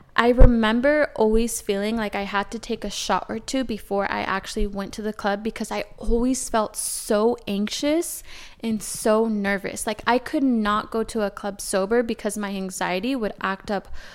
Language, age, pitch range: English, 20-39, 200-235 Hz